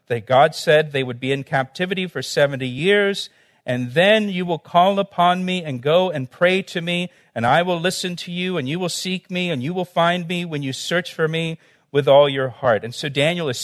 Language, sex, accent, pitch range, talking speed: English, male, American, 145-180 Hz, 235 wpm